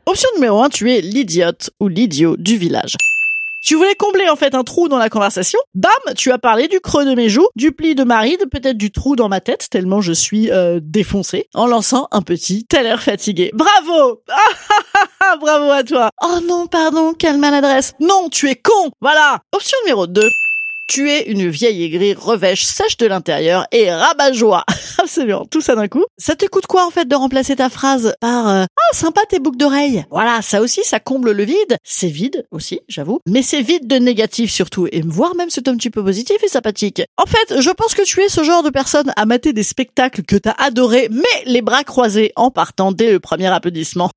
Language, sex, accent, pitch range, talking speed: French, female, French, 215-340 Hz, 215 wpm